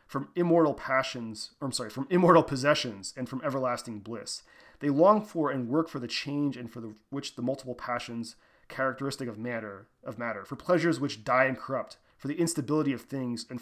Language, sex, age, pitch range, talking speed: English, male, 30-49, 115-145 Hz, 200 wpm